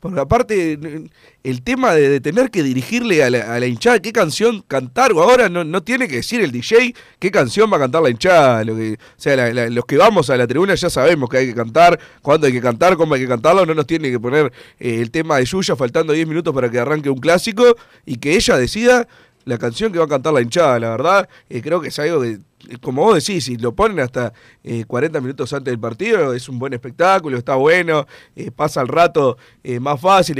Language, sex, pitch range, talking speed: Spanish, male, 125-175 Hz, 245 wpm